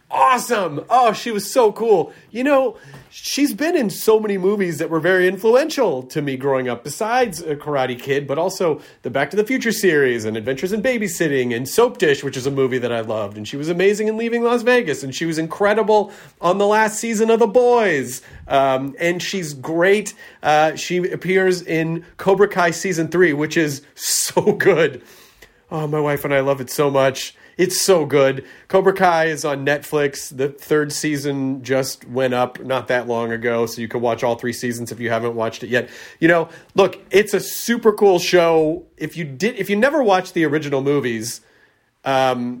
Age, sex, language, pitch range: 30-49, male, English, 135-195 Hz